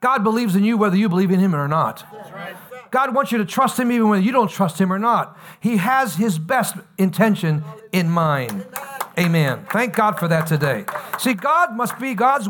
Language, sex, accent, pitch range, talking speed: English, male, American, 165-225 Hz, 205 wpm